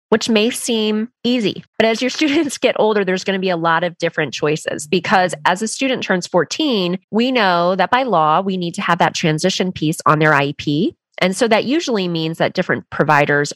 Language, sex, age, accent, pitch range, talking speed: English, female, 20-39, American, 160-210 Hz, 215 wpm